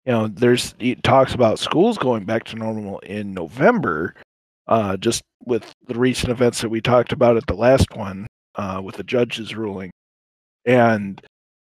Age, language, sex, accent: 40-59, English, male, American